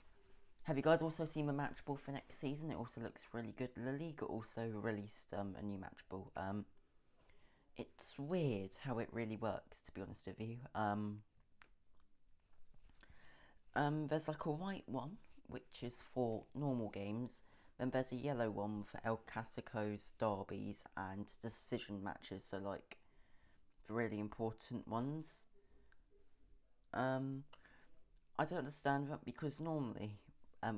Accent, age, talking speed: British, 20-39, 145 wpm